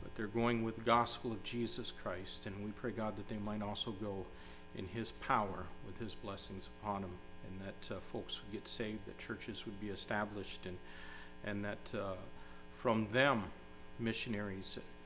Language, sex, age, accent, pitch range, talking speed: English, male, 40-59, American, 90-110 Hz, 180 wpm